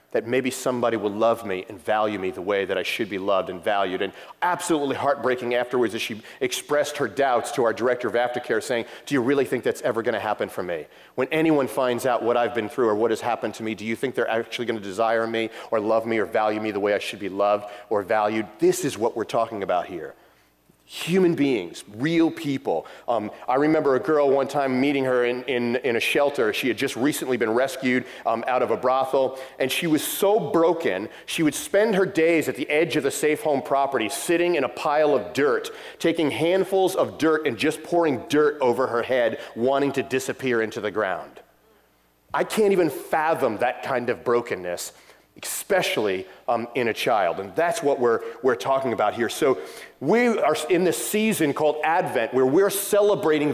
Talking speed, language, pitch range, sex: 210 wpm, English, 120-165 Hz, male